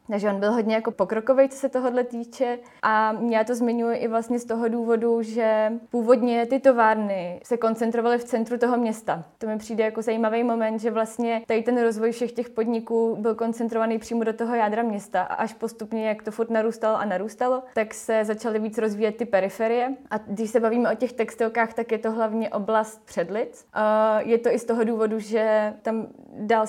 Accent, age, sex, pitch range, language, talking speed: native, 20-39, female, 215-235 Hz, Czech, 195 wpm